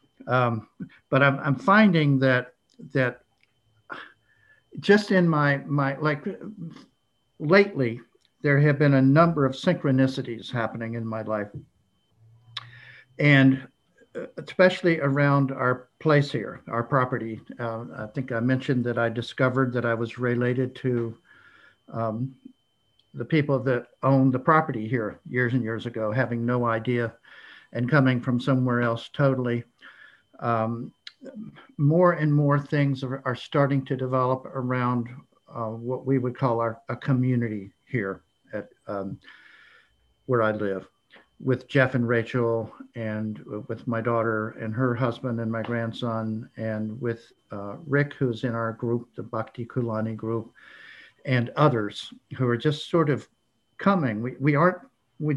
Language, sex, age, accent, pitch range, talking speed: English, male, 60-79, American, 115-140 Hz, 140 wpm